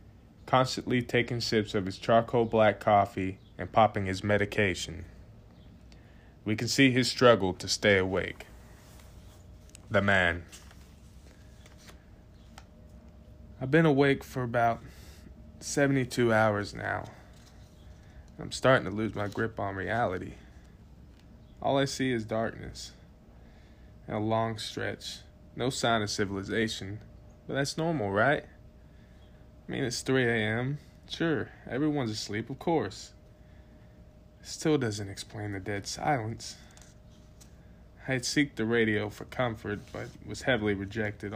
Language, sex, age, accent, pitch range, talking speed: English, male, 20-39, American, 100-115 Hz, 120 wpm